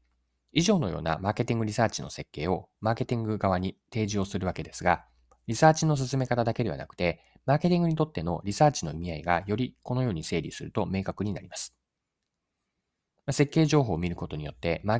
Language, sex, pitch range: Japanese, male, 85-120 Hz